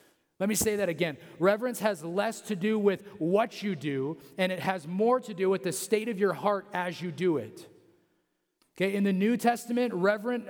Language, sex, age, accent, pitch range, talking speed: English, male, 30-49, American, 160-205 Hz, 205 wpm